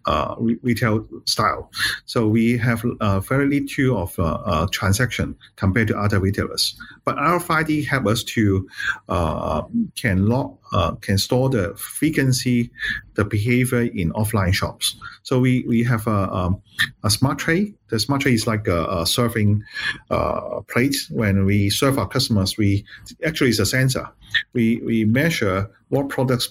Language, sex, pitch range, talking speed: English, male, 105-135 Hz, 155 wpm